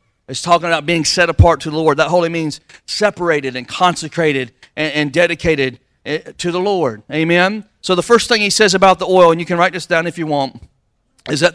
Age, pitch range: 40-59, 135-165 Hz